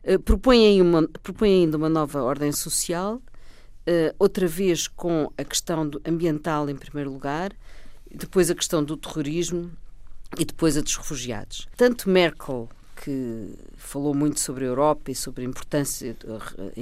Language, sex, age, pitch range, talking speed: Portuguese, female, 50-69, 135-175 Hz, 135 wpm